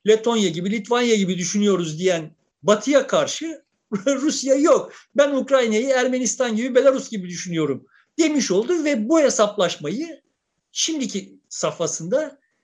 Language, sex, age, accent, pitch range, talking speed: Turkish, male, 50-69, native, 180-275 Hz, 115 wpm